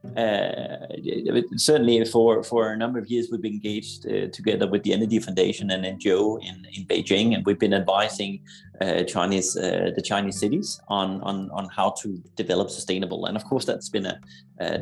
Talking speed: 185 wpm